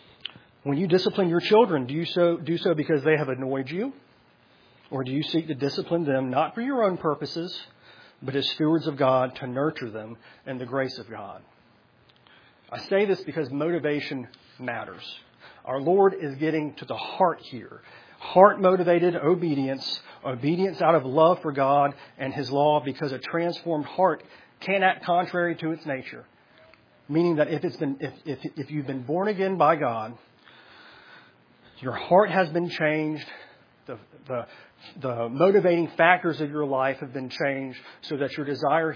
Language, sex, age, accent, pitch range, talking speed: English, male, 40-59, American, 135-175 Hz, 170 wpm